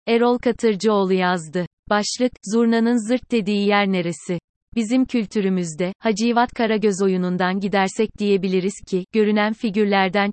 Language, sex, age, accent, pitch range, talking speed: Turkish, female, 30-49, native, 195-225 Hz, 110 wpm